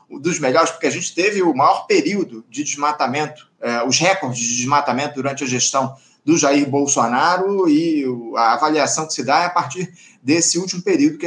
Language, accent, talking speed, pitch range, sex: Portuguese, Brazilian, 185 wpm, 145-205 Hz, male